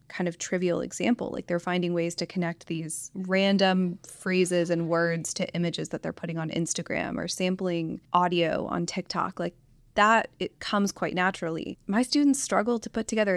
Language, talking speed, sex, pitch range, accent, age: English, 175 wpm, female, 170-195 Hz, American, 20-39